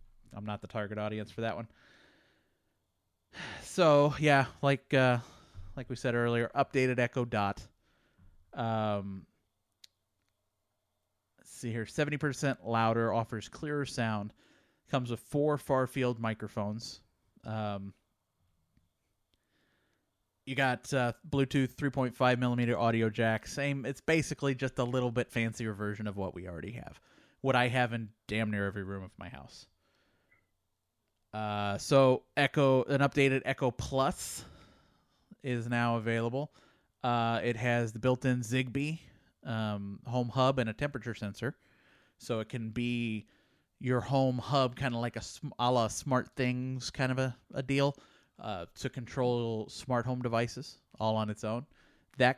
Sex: male